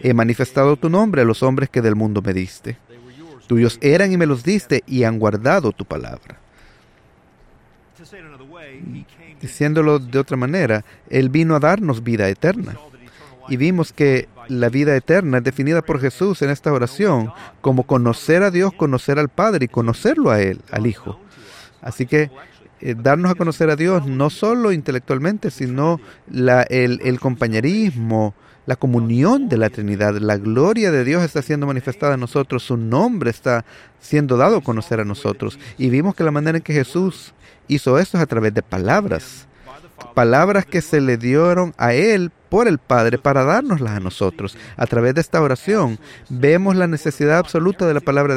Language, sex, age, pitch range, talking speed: English, male, 40-59, 120-160 Hz, 170 wpm